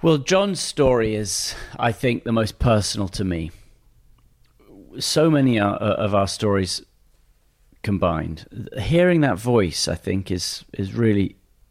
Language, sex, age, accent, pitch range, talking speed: English, male, 40-59, British, 95-125 Hz, 130 wpm